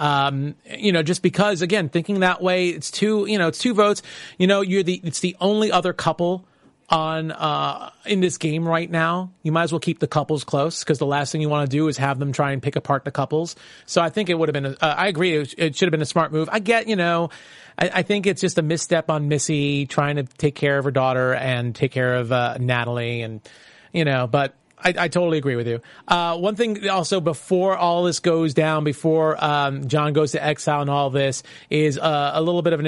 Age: 40-59